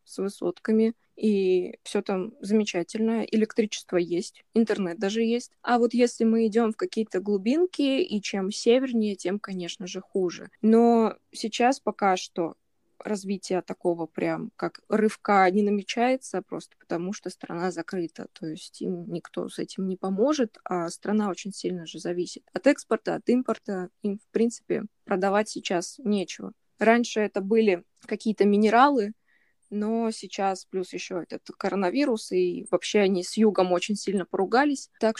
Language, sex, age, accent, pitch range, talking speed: Russian, female, 20-39, native, 195-235 Hz, 145 wpm